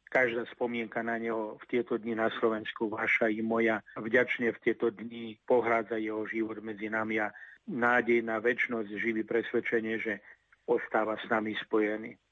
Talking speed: 155 wpm